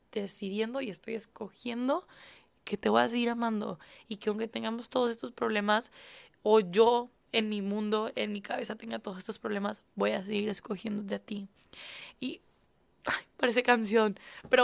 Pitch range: 195-235 Hz